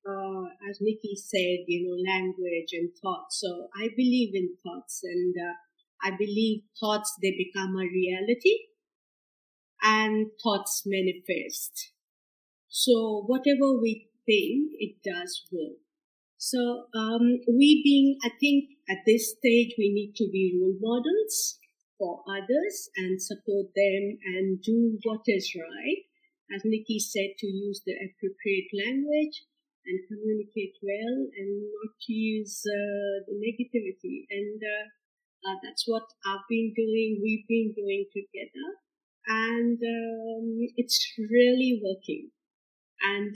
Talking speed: 130 wpm